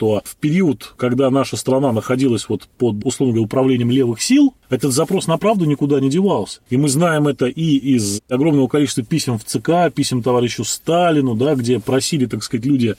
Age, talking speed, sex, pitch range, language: 20-39, 185 wpm, male, 120-150 Hz, Russian